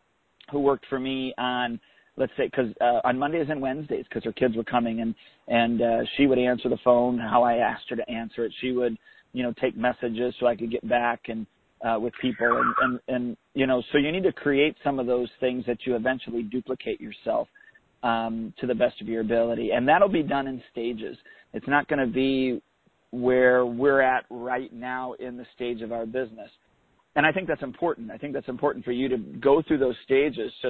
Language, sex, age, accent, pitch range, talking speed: English, male, 40-59, American, 120-130 Hz, 225 wpm